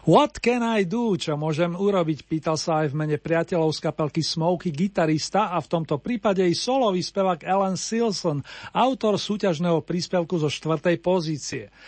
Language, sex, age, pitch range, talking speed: Slovak, male, 50-69, 160-195 Hz, 160 wpm